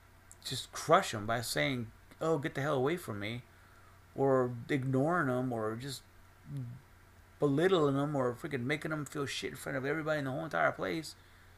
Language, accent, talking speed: English, American, 175 wpm